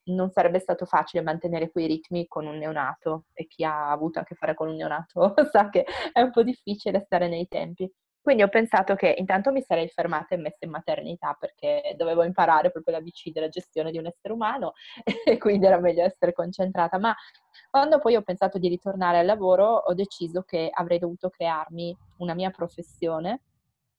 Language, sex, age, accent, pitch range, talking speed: Italian, female, 20-39, native, 170-215 Hz, 195 wpm